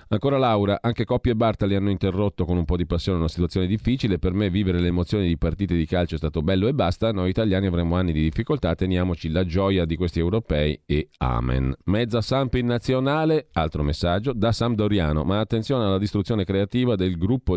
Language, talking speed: Italian, 200 wpm